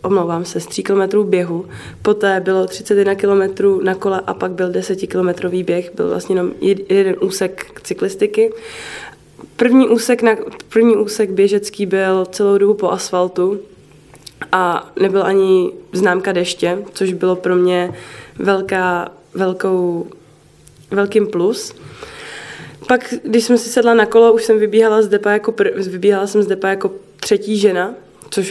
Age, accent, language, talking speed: 20-39, native, Czech, 150 wpm